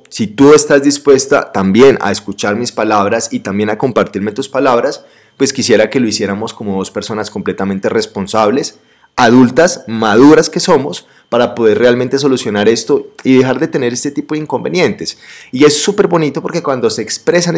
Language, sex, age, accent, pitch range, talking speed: Spanish, male, 30-49, Colombian, 110-150 Hz, 170 wpm